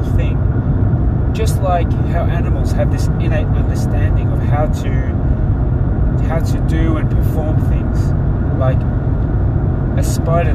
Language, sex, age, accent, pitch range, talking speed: English, male, 30-49, Australian, 110-125 Hz, 115 wpm